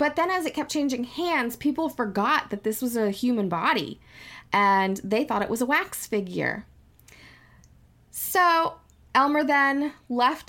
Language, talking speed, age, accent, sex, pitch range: English, 155 wpm, 20-39, American, female, 175-270 Hz